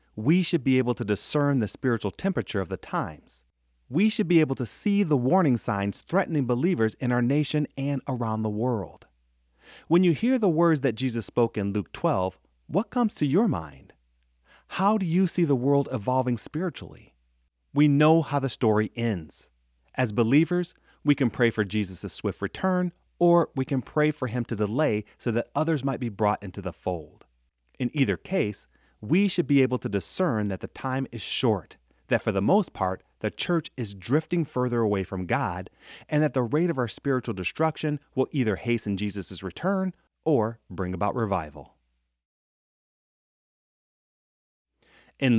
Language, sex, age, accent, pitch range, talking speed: English, male, 30-49, American, 100-150 Hz, 175 wpm